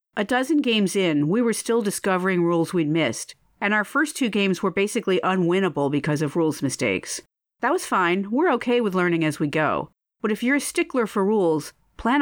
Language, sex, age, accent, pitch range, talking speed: English, female, 40-59, American, 160-230 Hz, 200 wpm